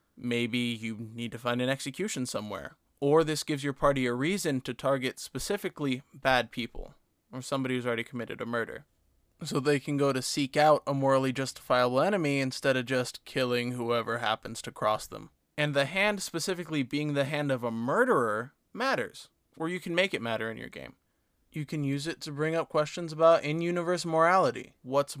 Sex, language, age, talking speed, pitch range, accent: male, English, 20-39, 190 wpm, 120-155 Hz, American